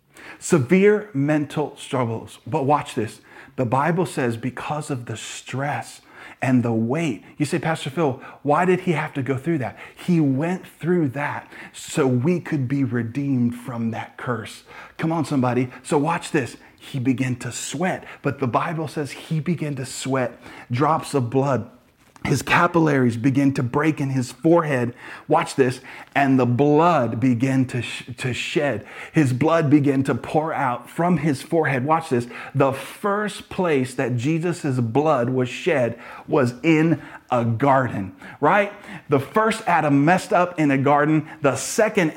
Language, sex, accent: English, male, American